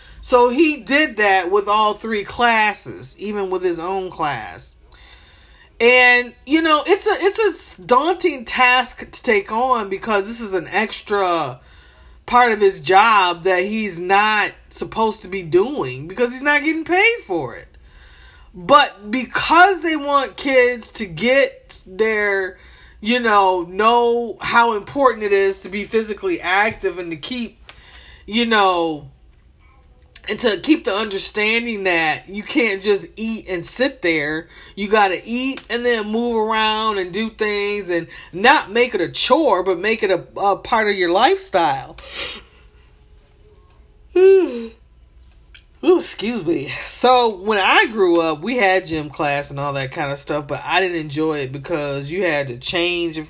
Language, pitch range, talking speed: English, 160-240 Hz, 160 wpm